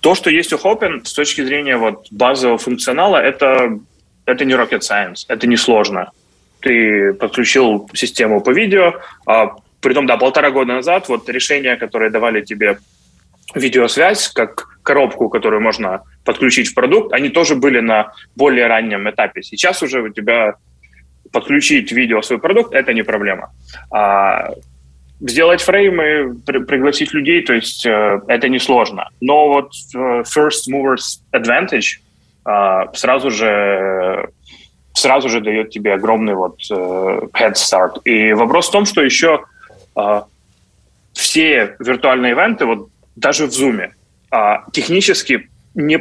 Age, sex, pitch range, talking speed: 20-39, male, 100-145 Hz, 140 wpm